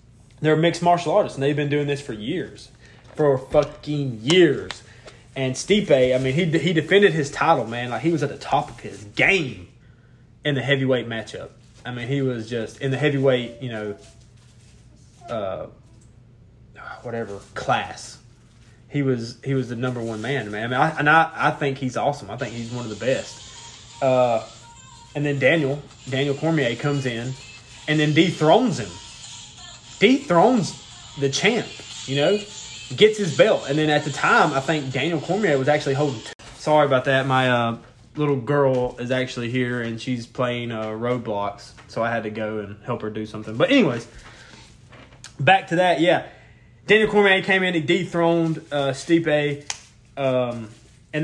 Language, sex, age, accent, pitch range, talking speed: English, male, 20-39, American, 120-150 Hz, 175 wpm